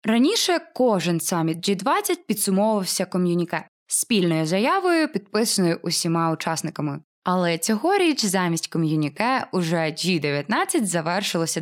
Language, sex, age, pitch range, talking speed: Ukrainian, female, 20-39, 170-220 Hz, 95 wpm